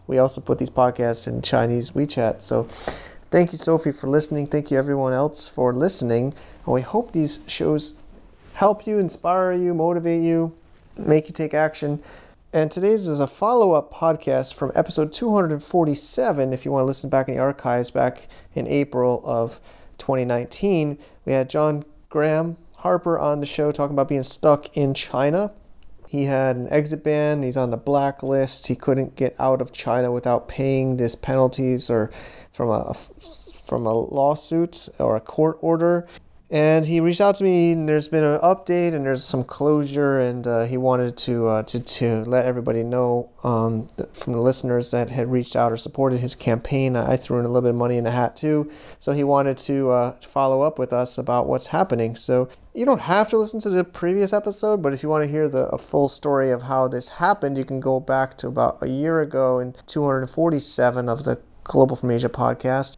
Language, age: English, 30-49